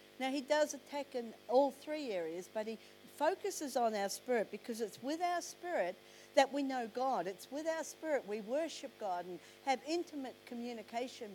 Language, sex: English, female